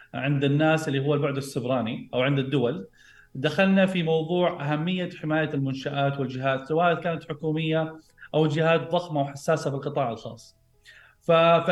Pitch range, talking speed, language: 135-170 Hz, 140 wpm, Arabic